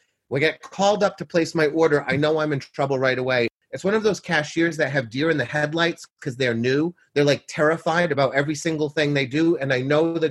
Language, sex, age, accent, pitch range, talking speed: English, male, 30-49, American, 140-180 Hz, 250 wpm